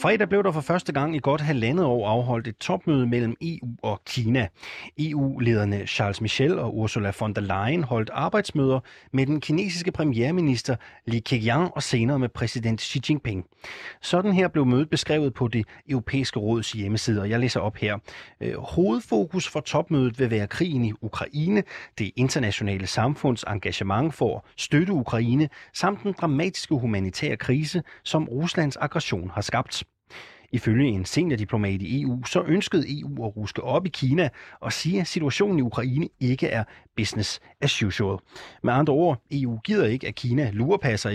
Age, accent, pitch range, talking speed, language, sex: 30-49, native, 110-150 Hz, 165 wpm, Danish, male